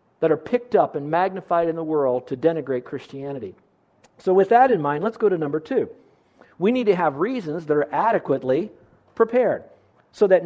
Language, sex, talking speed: English, male, 190 wpm